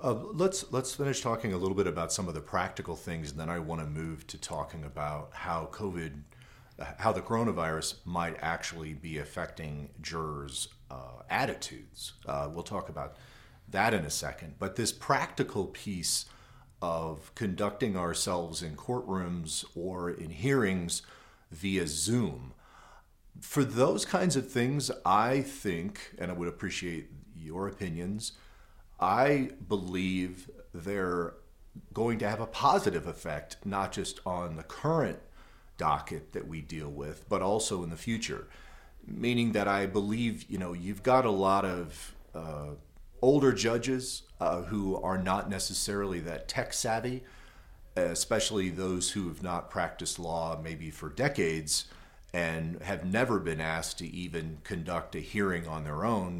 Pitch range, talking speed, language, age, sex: 80-105 Hz, 150 wpm, English, 40-59, male